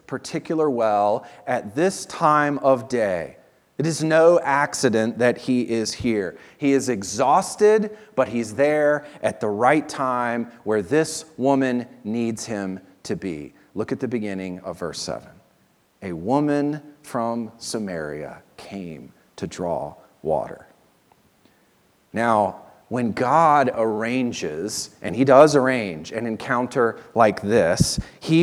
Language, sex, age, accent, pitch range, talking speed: English, male, 40-59, American, 120-150 Hz, 125 wpm